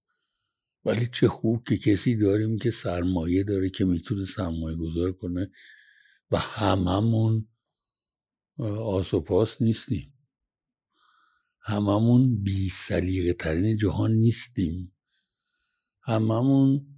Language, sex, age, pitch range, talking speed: Persian, male, 60-79, 110-145 Hz, 90 wpm